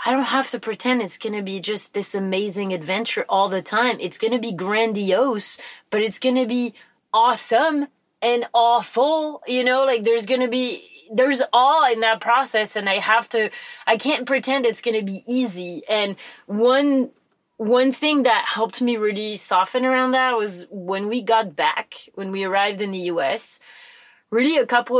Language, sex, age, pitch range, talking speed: English, female, 20-39, 190-245 Hz, 185 wpm